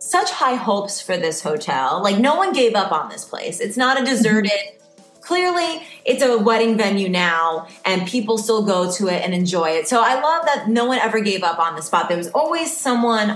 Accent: American